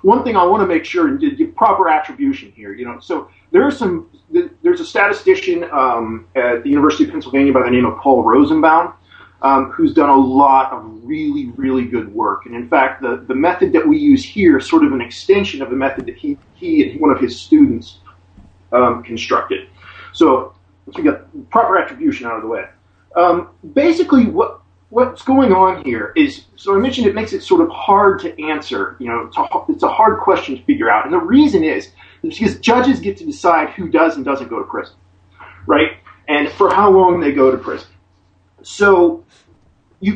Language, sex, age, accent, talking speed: English, male, 40-59, American, 205 wpm